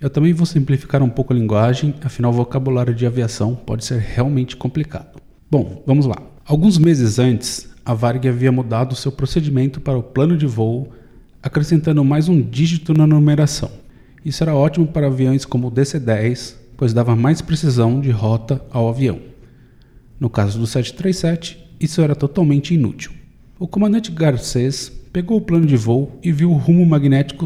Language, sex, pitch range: Portuguese, male, 120-155 Hz